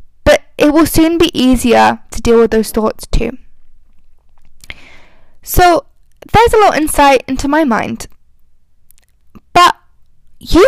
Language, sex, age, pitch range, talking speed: English, female, 10-29, 225-305 Hz, 120 wpm